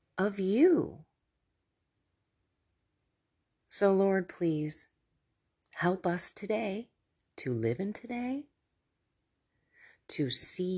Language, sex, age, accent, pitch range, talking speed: English, female, 40-59, American, 135-190 Hz, 80 wpm